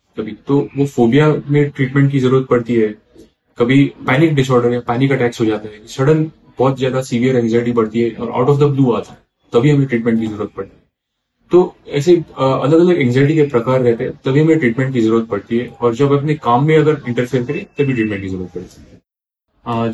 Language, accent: Hindi, native